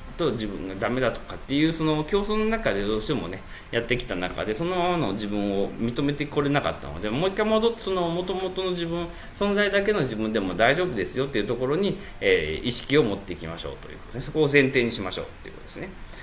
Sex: male